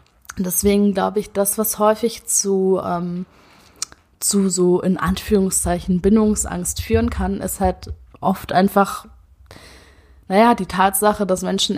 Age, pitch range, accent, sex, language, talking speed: 20-39, 170-200 Hz, German, female, German, 115 wpm